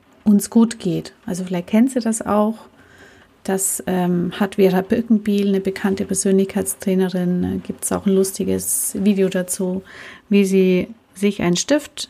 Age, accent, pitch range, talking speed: 30-49, German, 185-215 Hz, 145 wpm